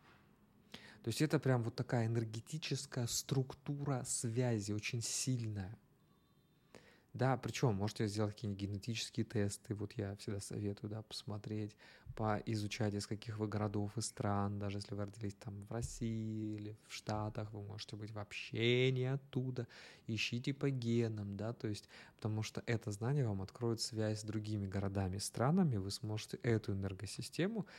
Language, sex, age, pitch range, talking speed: Russian, male, 20-39, 100-120 Hz, 145 wpm